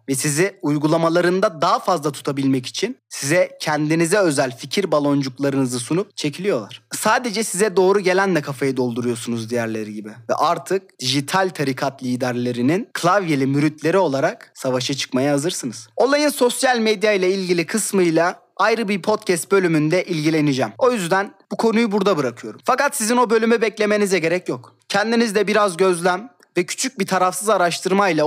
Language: Turkish